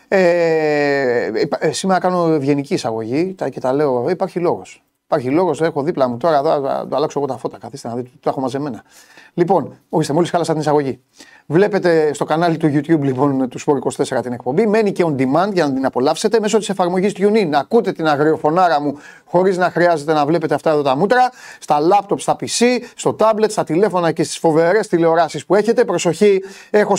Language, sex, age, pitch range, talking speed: Greek, male, 30-49, 160-225 Hz, 205 wpm